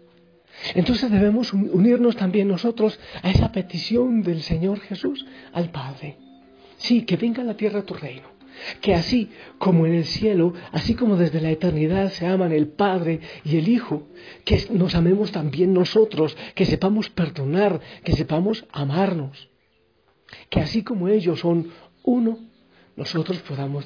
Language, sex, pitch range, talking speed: Spanish, male, 140-195 Hz, 150 wpm